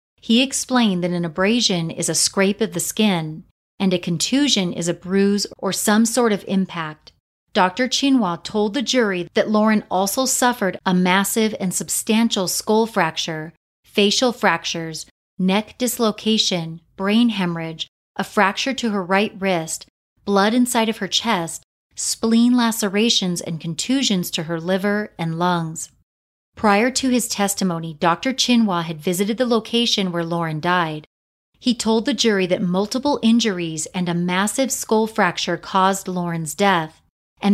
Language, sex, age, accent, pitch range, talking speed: English, female, 30-49, American, 175-225 Hz, 145 wpm